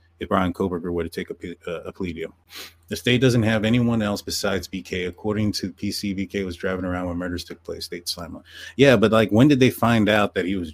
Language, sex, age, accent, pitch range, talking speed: English, male, 30-49, American, 90-110 Hz, 235 wpm